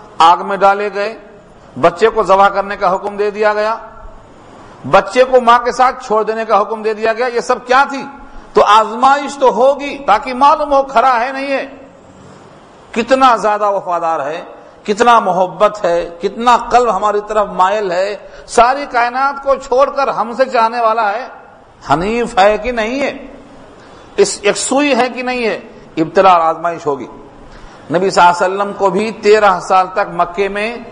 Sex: male